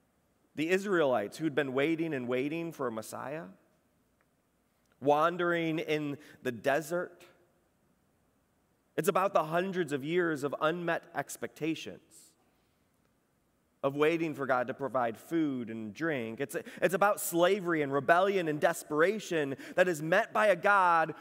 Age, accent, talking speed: 30-49, American, 130 wpm